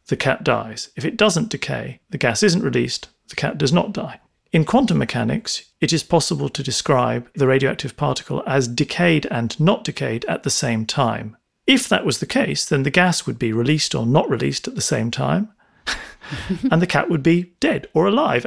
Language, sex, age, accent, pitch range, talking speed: English, male, 40-59, British, 120-165 Hz, 200 wpm